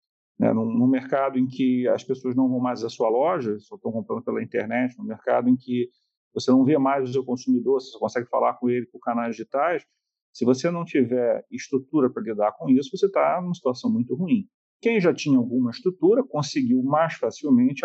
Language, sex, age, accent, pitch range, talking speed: Portuguese, male, 40-59, Brazilian, 125-190 Hz, 200 wpm